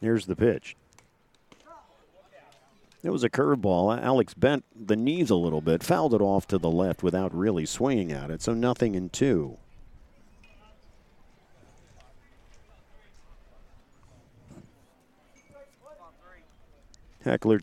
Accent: American